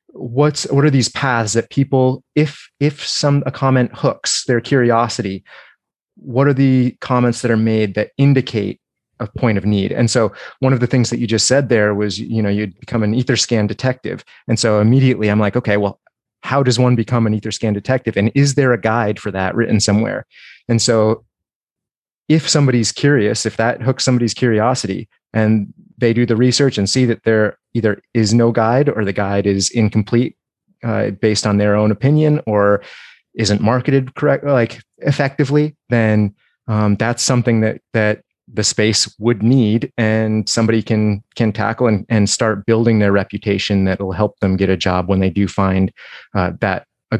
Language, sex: English, male